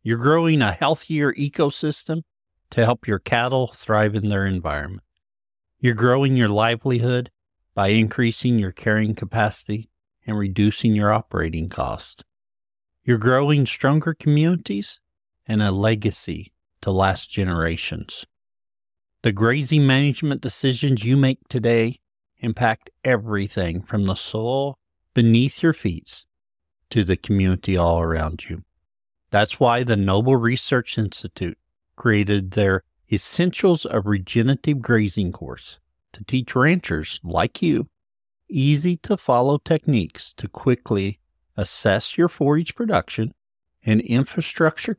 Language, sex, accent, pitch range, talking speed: English, male, American, 95-130 Hz, 115 wpm